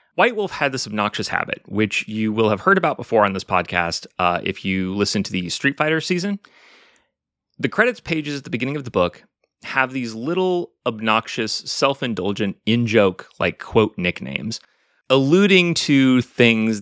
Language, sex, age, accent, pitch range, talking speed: English, male, 30-49, American, 105-150 Hz, 165 wpm